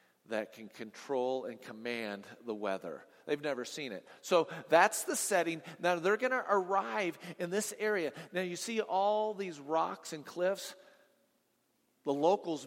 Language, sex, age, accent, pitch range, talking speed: English, male, 40-59, American, 135-180 Hz, 155 wpm